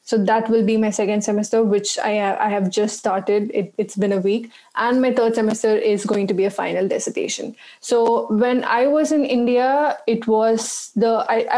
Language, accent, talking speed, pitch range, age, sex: English, Indian, 190 wpm, 205-225 Hz, 20-39, female